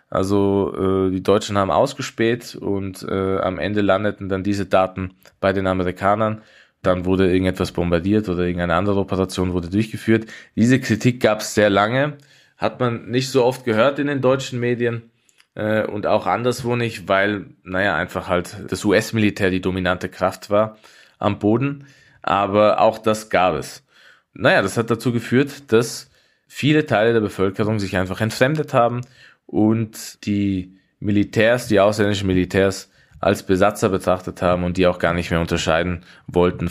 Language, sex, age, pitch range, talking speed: German, male, 20-39, 90-115 Hz, 160 wpm